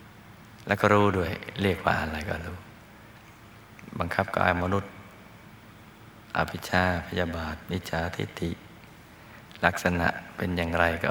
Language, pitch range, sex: Thai, 90-105 Hz, male